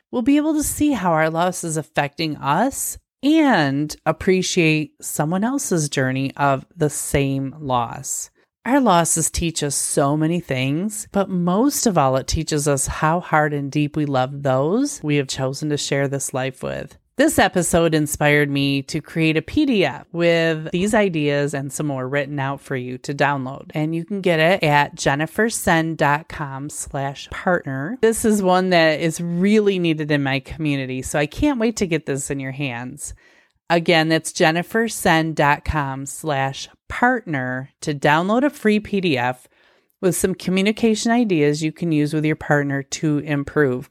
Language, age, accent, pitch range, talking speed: English, 30-49, American, 140-185 Hz, 160 wpm